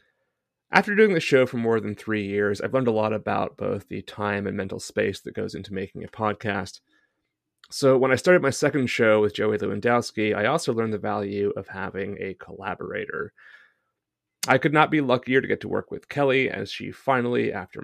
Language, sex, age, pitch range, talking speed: English, male, 30-49, 105-140 Hz, 200 wpm